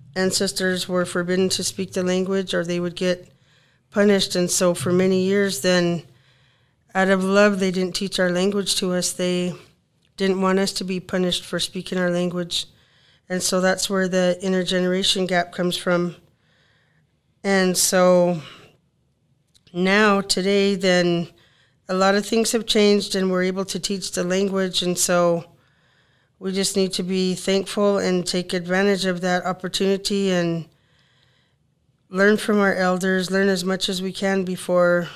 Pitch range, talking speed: 175-195 Hz, 155 wpm